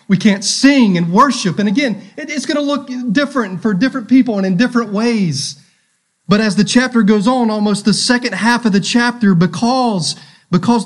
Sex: male